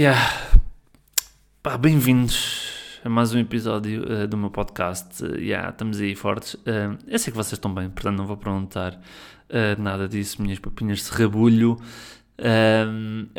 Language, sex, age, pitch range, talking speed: Portuguese, male, 20-39, 105-125 Hz, 155 wpm